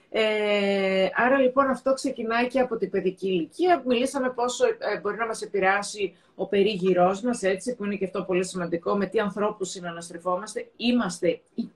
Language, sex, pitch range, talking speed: Greek, female, 195-270 Hz, 165 wpm